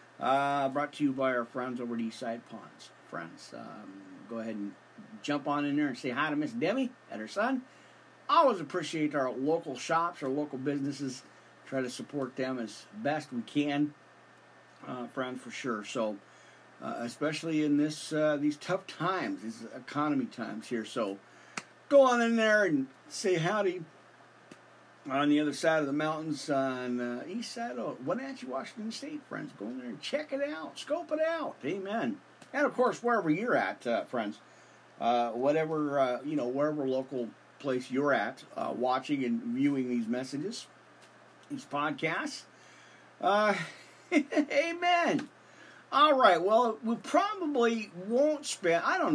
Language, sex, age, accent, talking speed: English, male, 50-69, American, 165 wpm